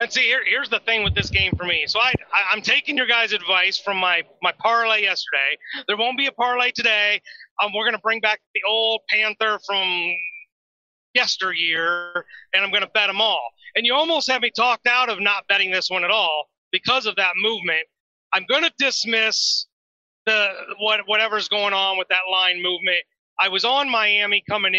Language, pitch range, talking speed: English, 185-225 Hz, 195 wpm